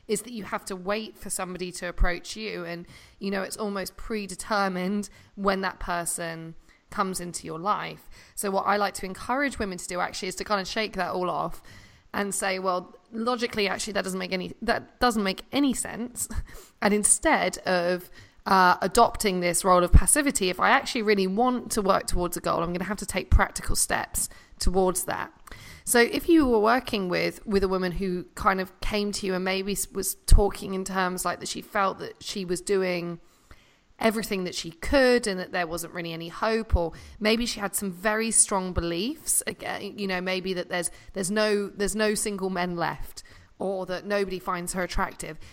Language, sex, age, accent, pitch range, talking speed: English, female, 20-39, British, 180-215 Hz, 200 wpm